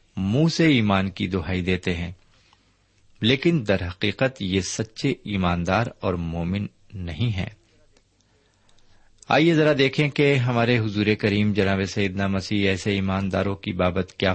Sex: male